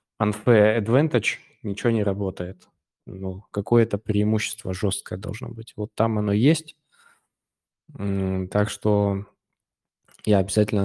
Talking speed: 105 wpm